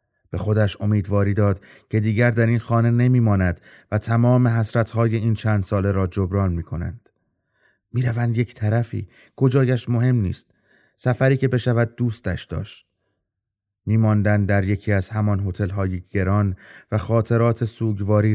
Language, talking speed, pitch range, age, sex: Persian, 140 wpm, 100-115 Hz, 30-49, male